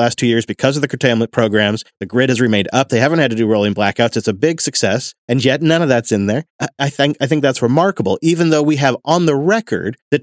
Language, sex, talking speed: English, male, 260 wpm